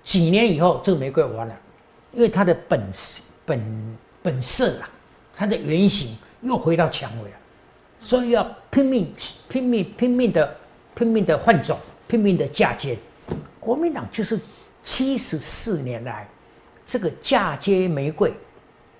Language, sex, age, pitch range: Chinese, male, 60-79, 135-220 Hz